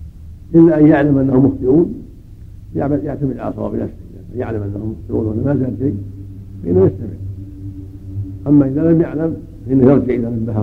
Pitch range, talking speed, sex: 95-135 Hz, 135 wpm, male